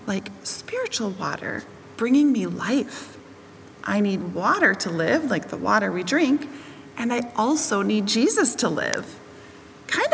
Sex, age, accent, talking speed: female, 30-49, American, 140 wpm